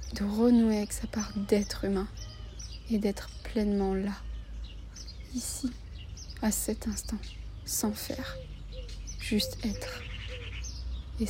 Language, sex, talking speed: French, female, 105 wpm